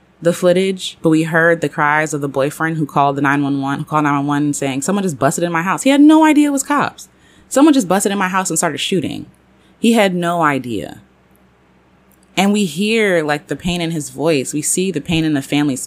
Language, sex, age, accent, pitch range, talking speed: English, female, 20-39, American, 135-170 Hz, 225 wpm